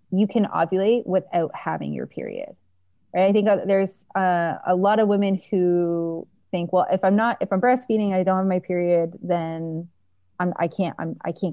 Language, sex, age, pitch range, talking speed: English, female, 20-39, 165-195 Hz, 170 wpm